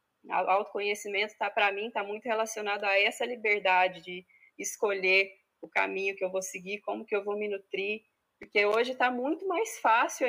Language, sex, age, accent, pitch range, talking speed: Portuguese, female, 20-39, Brazilian, 195-230 Hz, 175 wpm